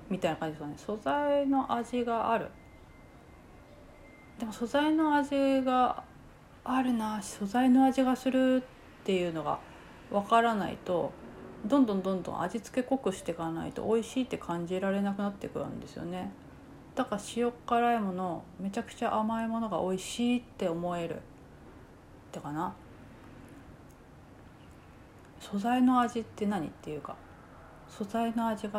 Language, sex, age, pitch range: Japanese, female, 30-49, 180-240 Hz